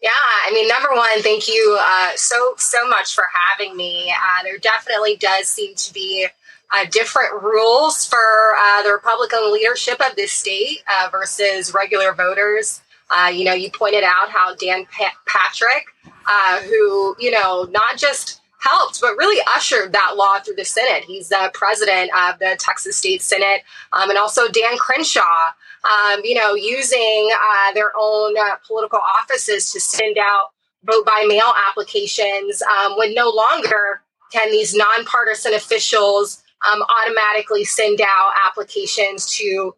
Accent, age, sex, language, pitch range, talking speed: American, 20-39, female, English, 200-240 Hz, 155 wpm